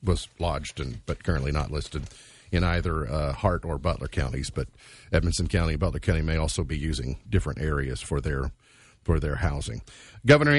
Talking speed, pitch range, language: 180 wpm, 95-115 Hz, English